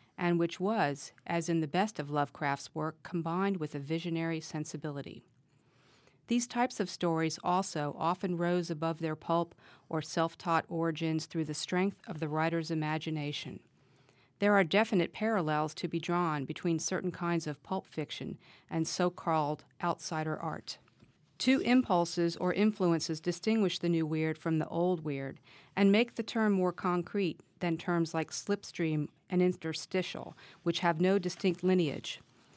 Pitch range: 160-190 Hz